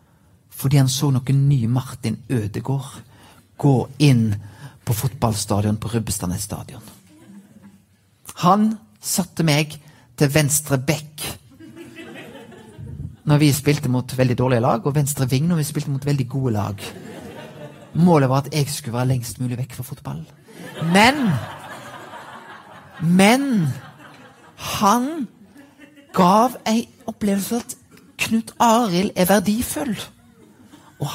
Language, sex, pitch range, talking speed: English, male, 125-175 Hz, 110 wpm